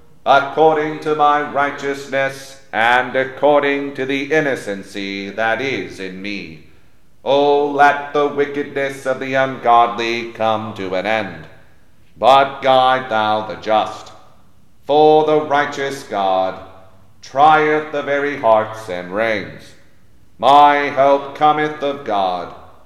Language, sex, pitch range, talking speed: English, male, 110-145 Hz, 120 wpm